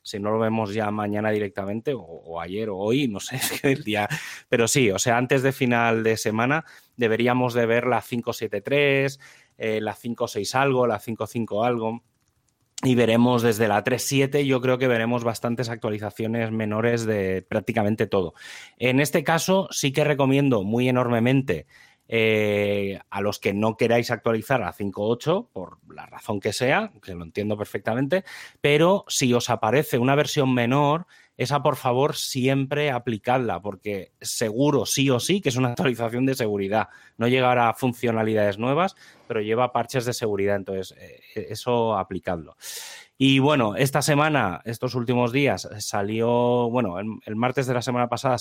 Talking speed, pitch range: 160 wpm, 110-135 Hz